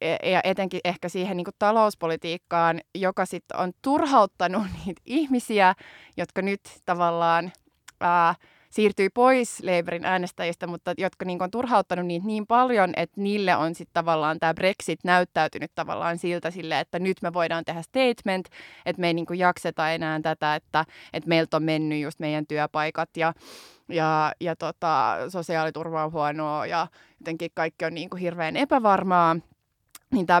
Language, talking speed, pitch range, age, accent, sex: Finnish, 150 wpm, 165-190 Hz, 20-39, native, female